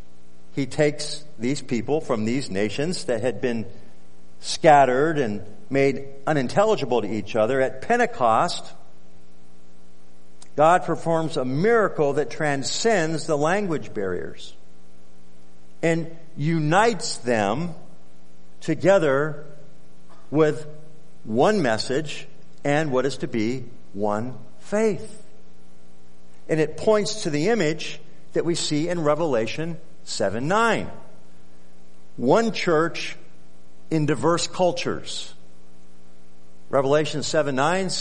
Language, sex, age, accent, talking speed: English, male, 50-69, American, 100 wpm